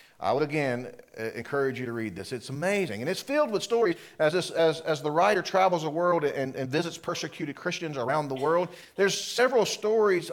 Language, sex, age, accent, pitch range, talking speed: English, male, 40-59, American, 140-180 Hz, 205 wpm